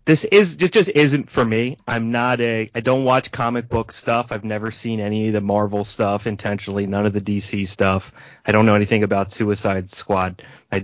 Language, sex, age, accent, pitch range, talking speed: English, male, 30-49, American, 110-145 Hz, 205 wpm